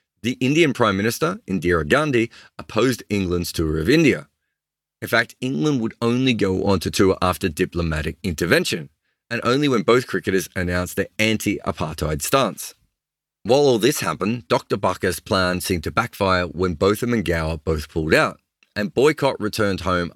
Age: 30-49